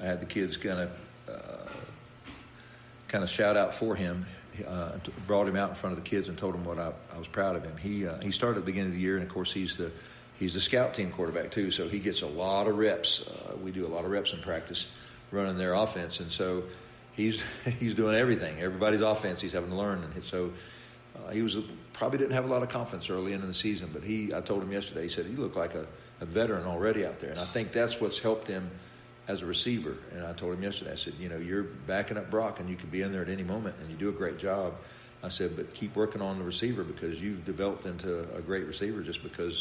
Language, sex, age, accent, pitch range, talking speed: English, male, 50-69, American, 85-105 Hz, 260 wpm